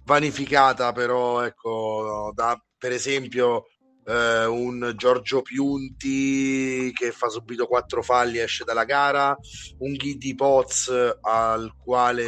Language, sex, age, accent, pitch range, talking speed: Italian, male, 30-49, native, 115-135 Hz, 115 wpm